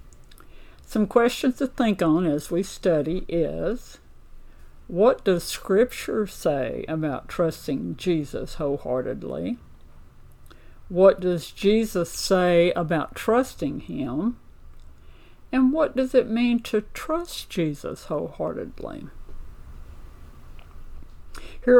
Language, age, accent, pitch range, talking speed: English, 60-79, American, 145-195 Hz, 95 wpm